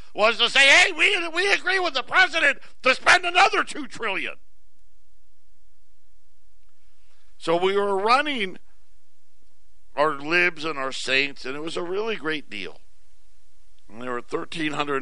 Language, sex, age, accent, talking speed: English, male, 50-69, American, 145 wpm